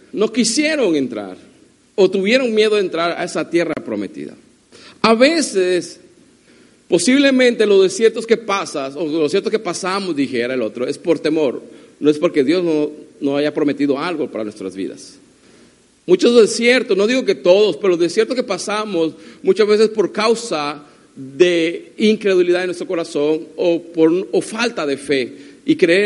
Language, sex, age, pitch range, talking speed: Spanish, male, 50-69, 155-220 Hz, 160 wpm